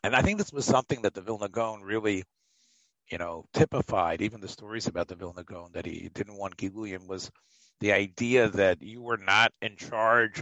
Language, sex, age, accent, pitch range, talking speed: English, male, 50-69, American, 100-130 Hz, 190 wpm